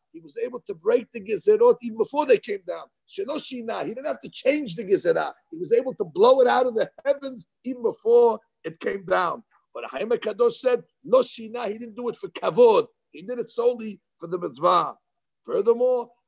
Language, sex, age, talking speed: English, male, 50-69, 190 wpm